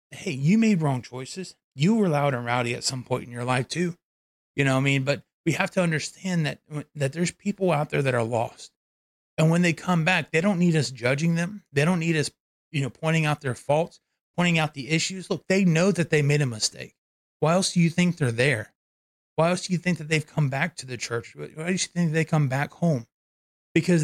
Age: 30-49